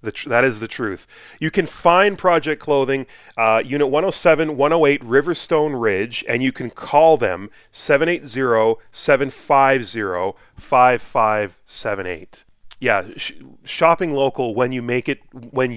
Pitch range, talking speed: 115-150 Hz, 110 wpm